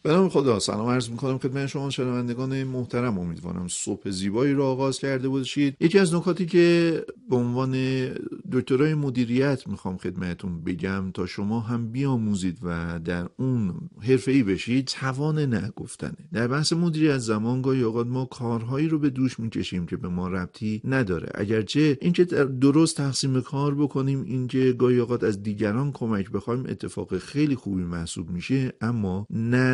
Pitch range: 95-130 Hz